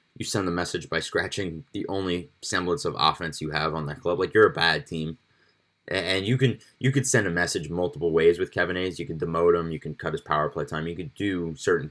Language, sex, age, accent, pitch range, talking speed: English, male, 20-39, American, 80-110 Hz, 245 wpm